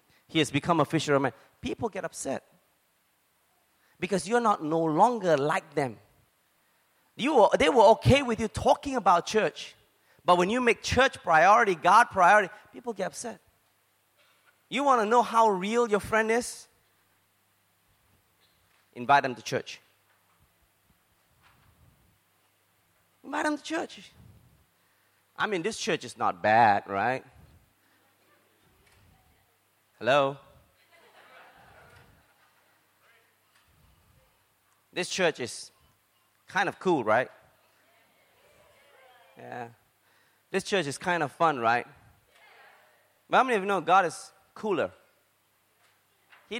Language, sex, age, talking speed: English, male, 30-49, 110 wpm